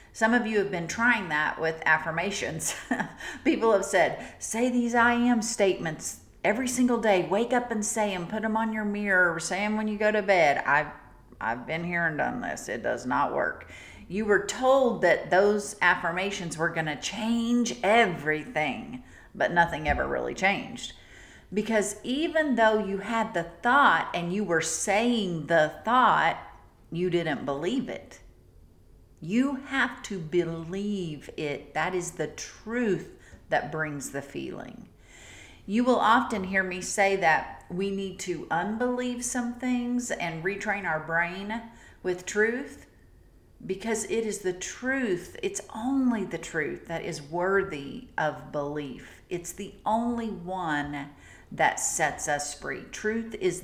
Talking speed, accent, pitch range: 155 wpm, American, 160-225 Hz